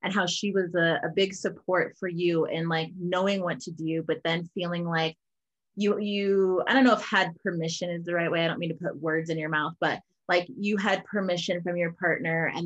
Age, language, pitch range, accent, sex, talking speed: 20-39, English, 175-250 Hz, American, female, 235 wpm